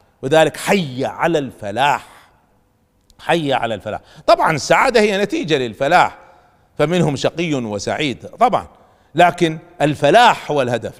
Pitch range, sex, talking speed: 100-155 Hz, male, 110 wpm